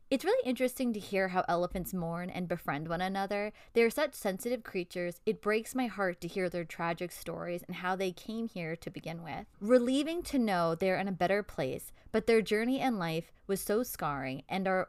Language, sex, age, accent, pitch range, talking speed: English, female, 20-39, American, 180-240 Hz, 215 wpm